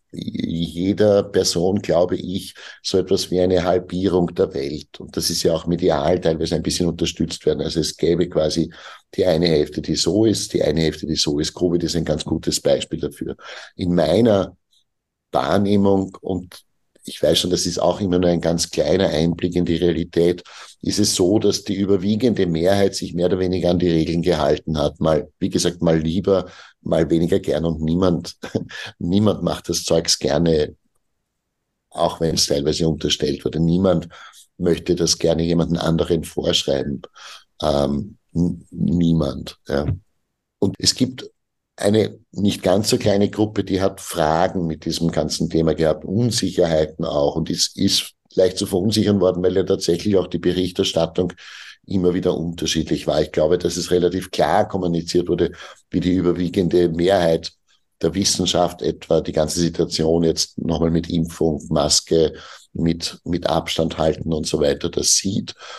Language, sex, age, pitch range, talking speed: German, male, 50-69, 80-95 Hz, 165 wpm